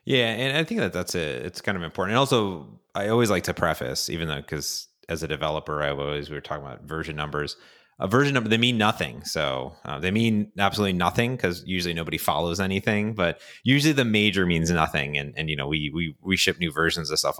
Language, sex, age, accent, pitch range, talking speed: English, male, 30-49, American, 85-105 Hz, 230 wpm